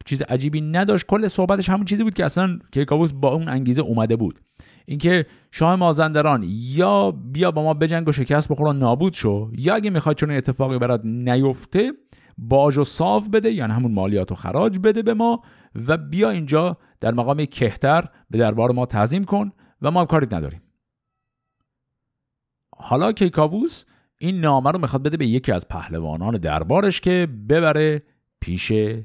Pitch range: 115-175 Hz